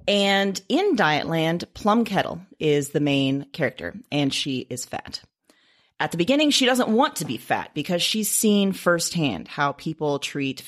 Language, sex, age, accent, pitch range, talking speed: English, female, 30-49, American, 145-215 Hz, 165 wpm